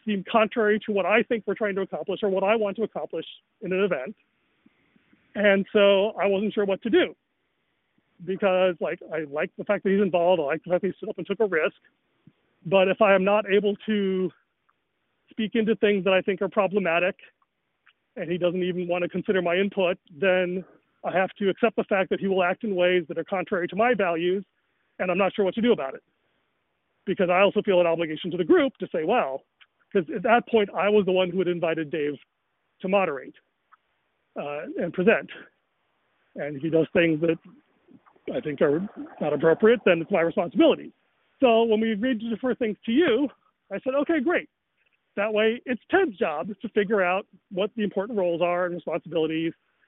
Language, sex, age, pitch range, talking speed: English, male, 40-59, 180-220 Hz, 205 wpm